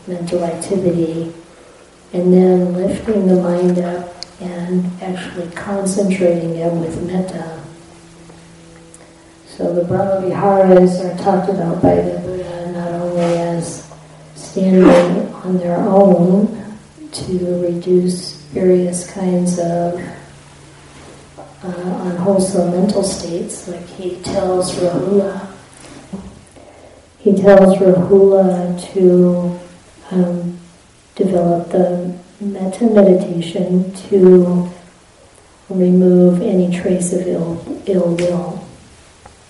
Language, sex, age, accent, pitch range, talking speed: English, female, 40-59, American, 175-190 Hz, 95 wpm